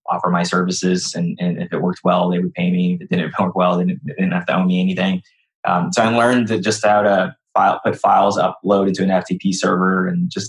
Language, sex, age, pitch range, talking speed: English, male, 20-39, 90-110 Hz, 255 wpm